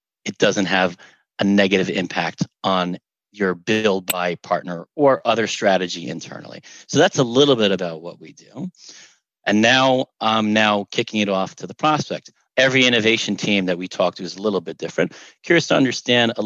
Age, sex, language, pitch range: 40-59, male, English, 95-120 Hz